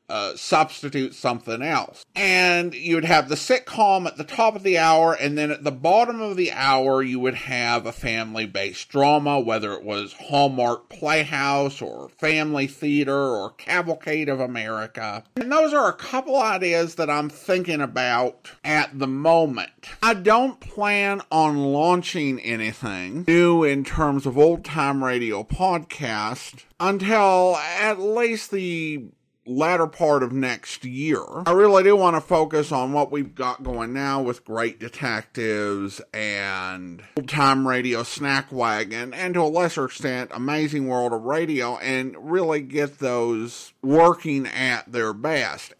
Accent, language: American, English